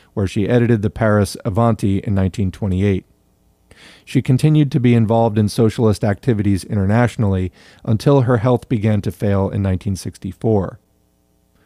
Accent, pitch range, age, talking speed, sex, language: American, 100-120 Hz, 40-59, 130 wpm, male, English